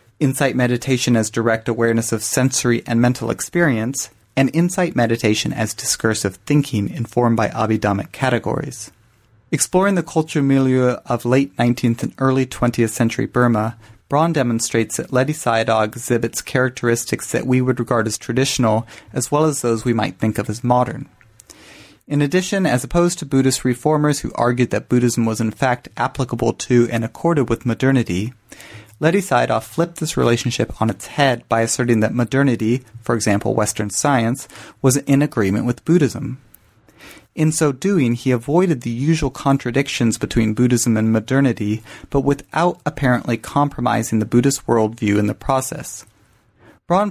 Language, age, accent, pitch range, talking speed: English, 30-49, American, 110-135 Hz, 150 wpm